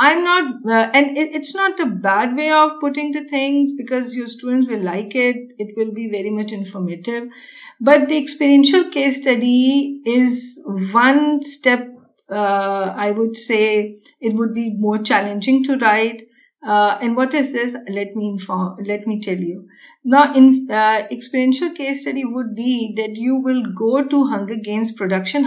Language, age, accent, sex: English, 50-69, Indian, female